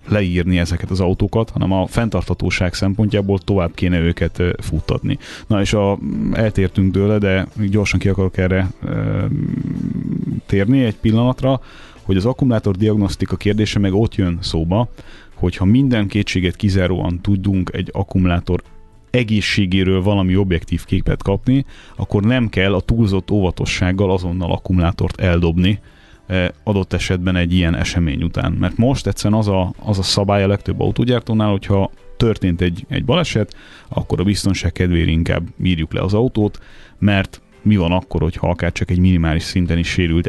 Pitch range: 90-105 Hz